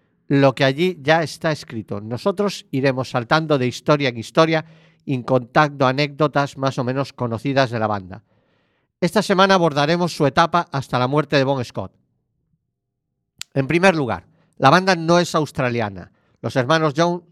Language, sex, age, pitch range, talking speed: Spanish, male, 50-69, 125-160 Hz, 155 wpm